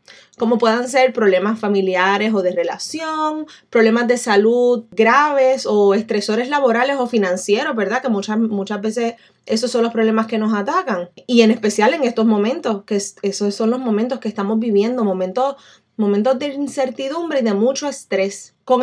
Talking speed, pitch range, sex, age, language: 165 wpm, 205-260 Hz, female, 20-39, Spanish